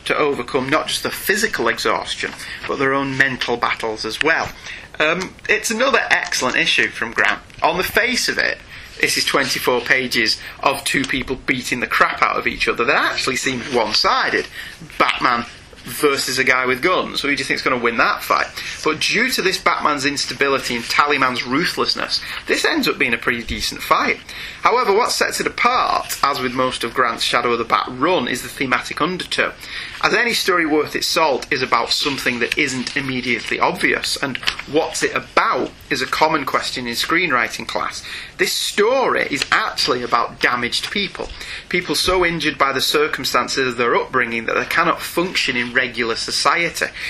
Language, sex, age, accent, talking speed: English, male, 30-49, British, 180 wpm